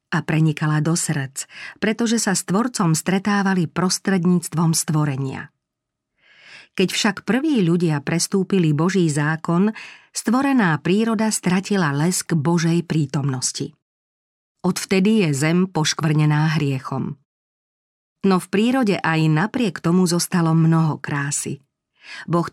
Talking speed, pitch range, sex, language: 105 wpm, 150-190 Hz, female, Slovak